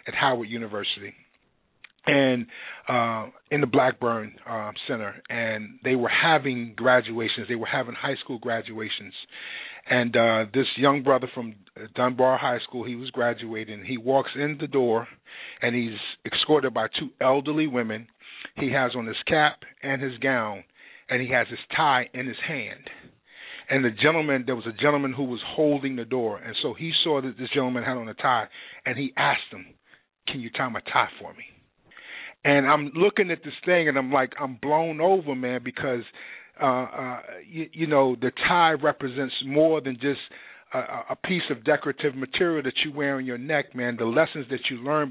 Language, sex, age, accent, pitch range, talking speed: English, male, 40-59, American, 125-150 Hz, 185 wpm